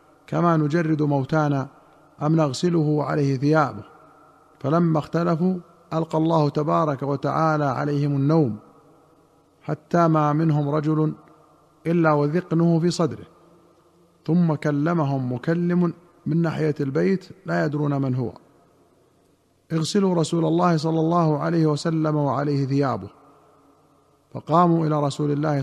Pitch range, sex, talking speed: 145-160 Hz, male, 110 wpm